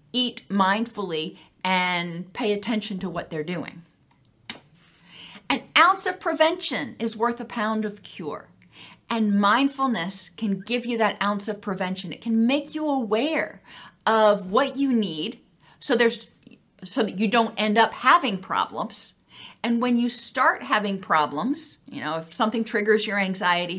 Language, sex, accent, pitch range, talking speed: English, female, American, 195-240 Hz, 150 wpm